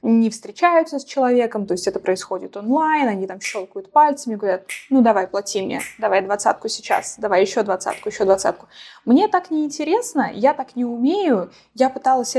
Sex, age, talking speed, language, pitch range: female, 20-39, 170 wpm, Russian, 195-250 Hz